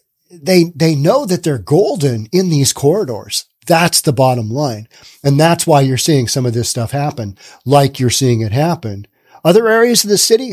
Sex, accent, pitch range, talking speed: male, American, 130-170 Hz, 190 wpm